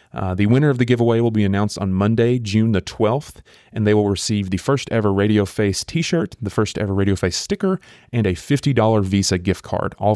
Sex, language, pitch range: male, English, 95-110 Hz